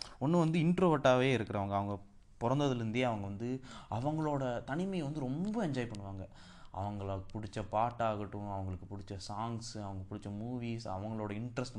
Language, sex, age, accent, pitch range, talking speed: Tamil, male, 20-39, native, 100-125 Hz, 125 wpm